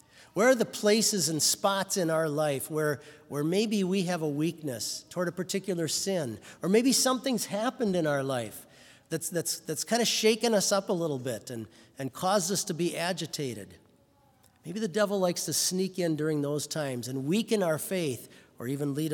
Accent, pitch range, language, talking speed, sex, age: American, 145-195 Hz, English, 195 wpm, male, 40-59